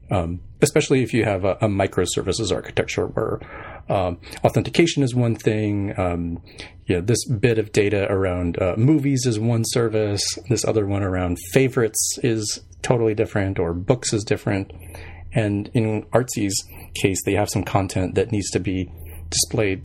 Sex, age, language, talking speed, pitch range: male, 40-59, English, 155 wpm, 90-115 Hz